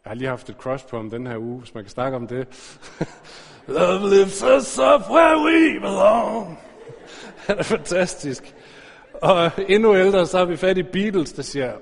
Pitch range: 130-190 Hz